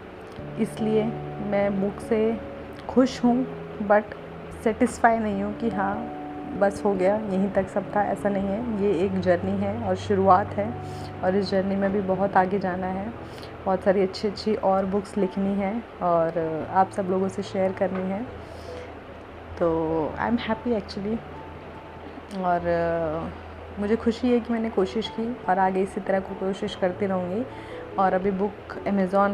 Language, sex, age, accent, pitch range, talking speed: Hindi, female, 30-49, native, 190-220 Hz, 160 wpm